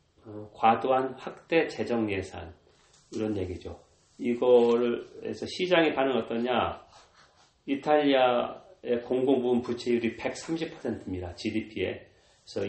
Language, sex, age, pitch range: Korean, male, 40-59, 95-120 Hz